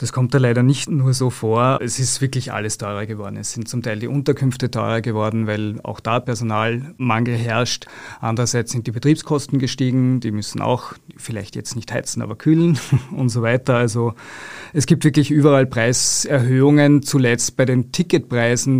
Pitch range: 115-130 Hz